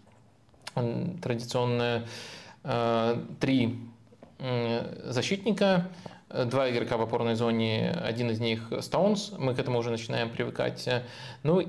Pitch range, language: 120-145 Hz, Russian